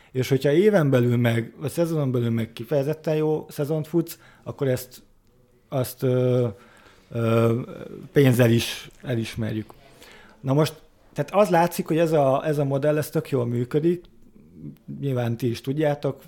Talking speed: 150 wpm